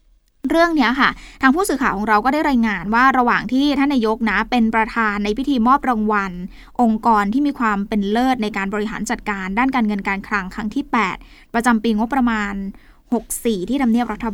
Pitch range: 210-270 Hz